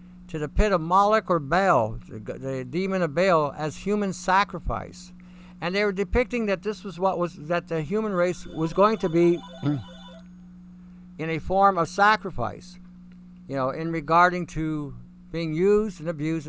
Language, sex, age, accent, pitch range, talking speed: English, male, 60-79, American, 165-195 Hz, 165 wpm